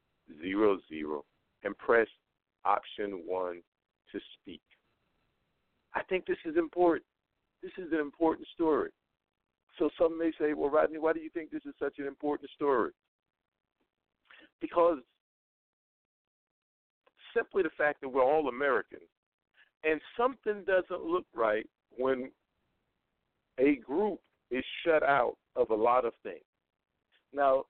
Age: 50-69